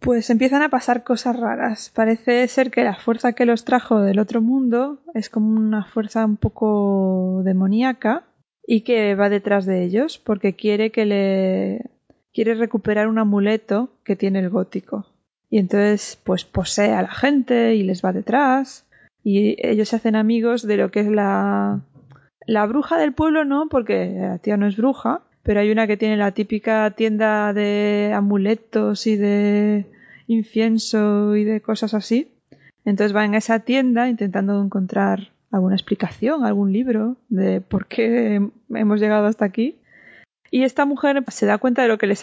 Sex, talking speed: female, 170 wpm